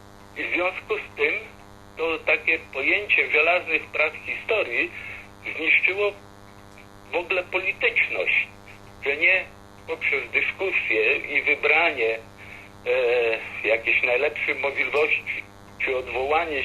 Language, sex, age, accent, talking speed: Polish, male, 50-69, native, 95 wpm